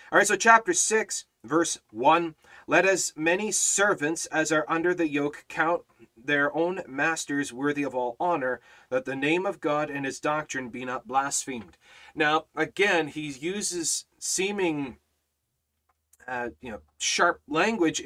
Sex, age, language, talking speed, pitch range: male, 30-49, English, 150 wpm, 135-175 Hz